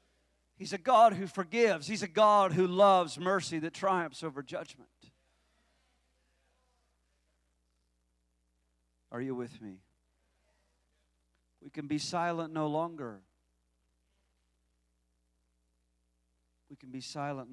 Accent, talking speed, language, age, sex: American, 100 wpm, English, 40-59, male